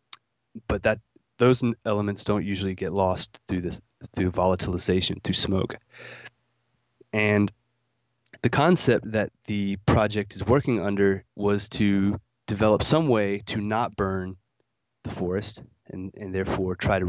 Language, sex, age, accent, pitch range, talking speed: English, male, 20-39, American, 95-115 Hz, 135 wpm